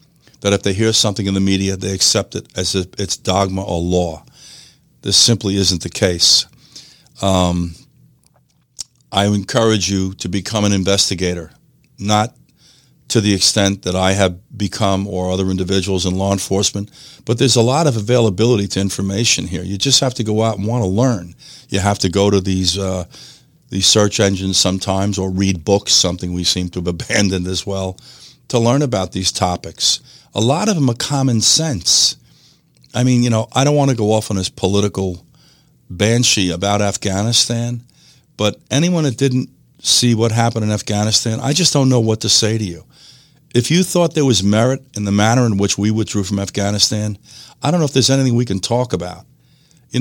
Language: English